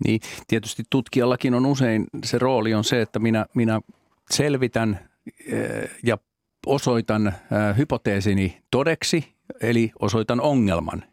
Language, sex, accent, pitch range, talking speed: Finnish, male, native, 90-115 Hz, 110 wpm